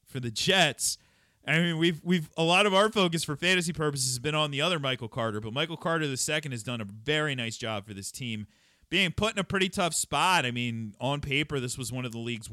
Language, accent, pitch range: English, American, 110-165 Hz